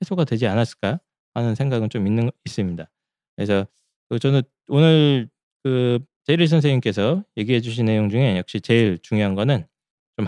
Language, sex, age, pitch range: Korean, male, 20-39, 105-150 Hz